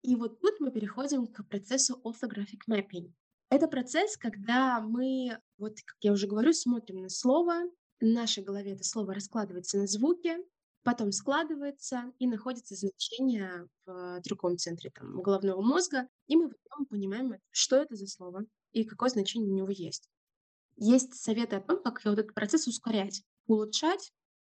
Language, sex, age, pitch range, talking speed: Russian, female, 20-39, 200-255 Hz, 155 wpm